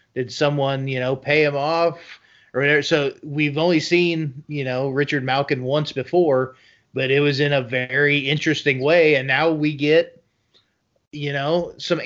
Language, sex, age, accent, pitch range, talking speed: English, male, 30-49, American, 130-155 Hz, 170 wpm